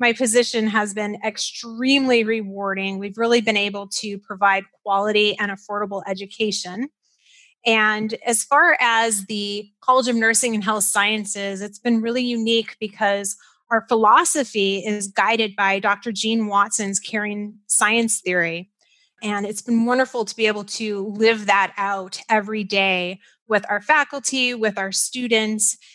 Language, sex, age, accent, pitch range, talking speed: English, female, 30-49, American, 200-230 Hz, 145 wpm